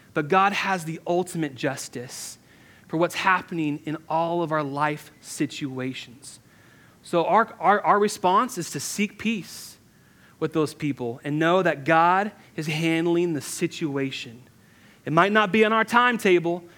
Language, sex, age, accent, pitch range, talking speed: English, male, 30-49, American, 155-190 Hz, 150 wpm